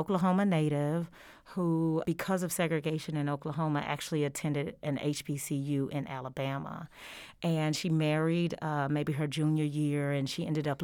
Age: 40-59